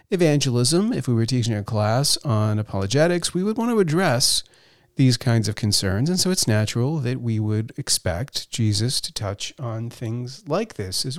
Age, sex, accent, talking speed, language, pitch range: 40-59, male, American, 180 wpm, English, 110-150 Hz